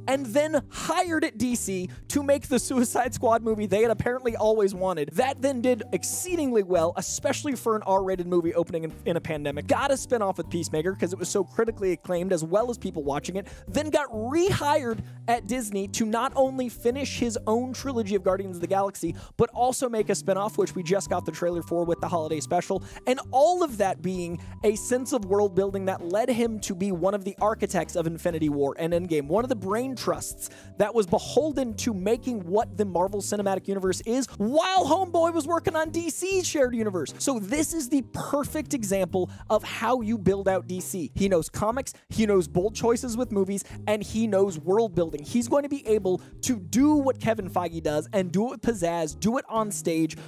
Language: English